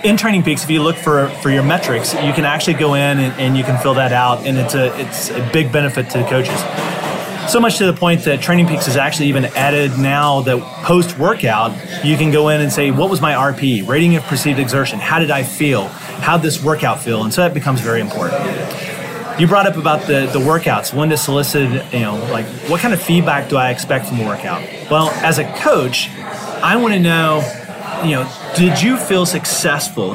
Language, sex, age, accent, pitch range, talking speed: English, male, 30-49, American, 135-170 Hz, 225 wpm